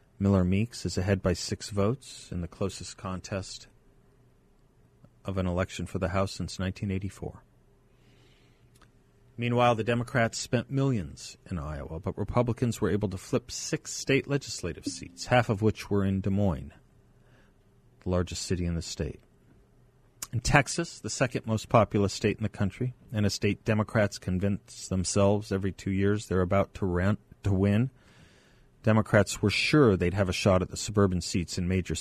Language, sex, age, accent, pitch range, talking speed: English, male, 40-59, American, 90-110 Hz, 160 wpm